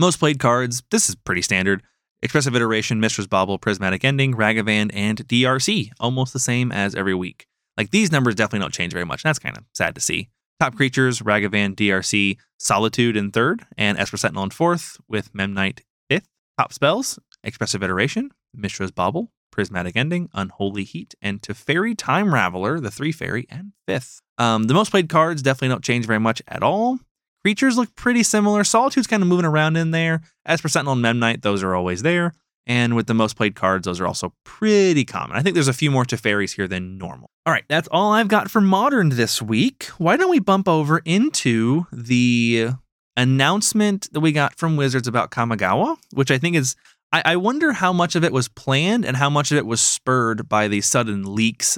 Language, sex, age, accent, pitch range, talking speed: English, male, 20-39, American, 105-165 Hz, 200 wpm